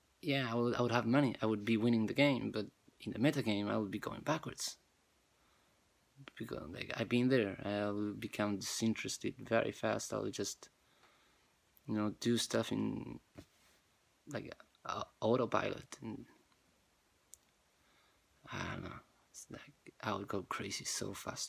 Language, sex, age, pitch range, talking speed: English, male, 20-39, 100-115 Hz, 160 wpm